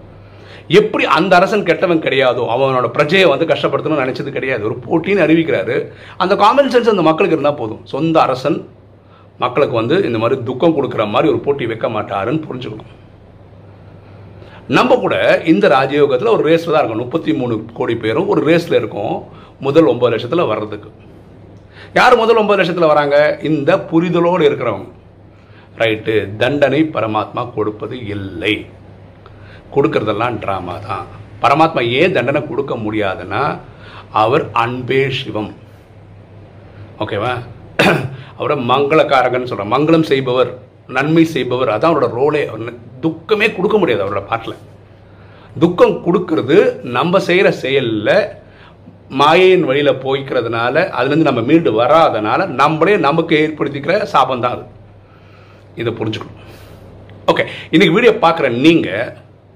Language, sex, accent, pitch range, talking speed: Tamil, male, native, 100-160 Hz, 85 wpm